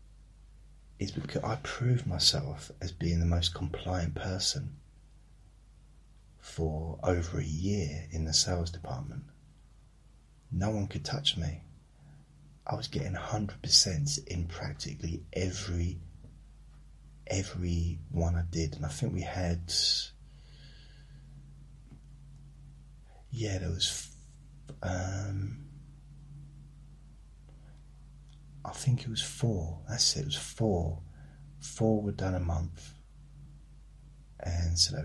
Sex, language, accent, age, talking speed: male, English, British, 30-49, 105 wpm